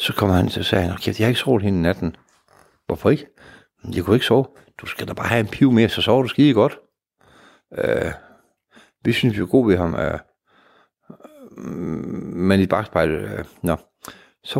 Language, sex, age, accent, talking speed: Danish, male, 60-79, native, 180 wpm